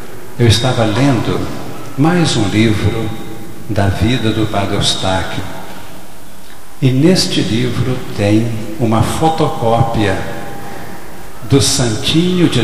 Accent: Brazilian